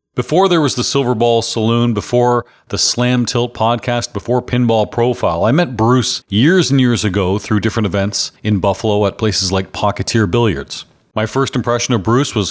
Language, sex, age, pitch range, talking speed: English, male, 40-59, 100-120 Hz, 180 wpm